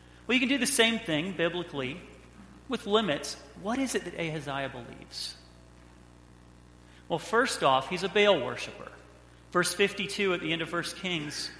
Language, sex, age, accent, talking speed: English, male, 40-59, American, 160 wpm